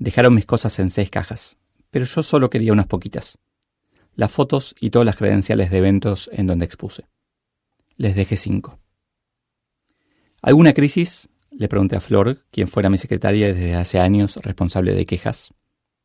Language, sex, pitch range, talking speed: Spanish, male, 95-120 Hz, 155 wpm